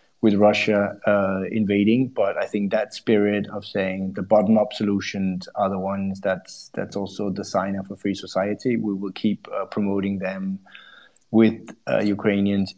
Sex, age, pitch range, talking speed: male, 20-39, 100-110 Hz, 165 wpm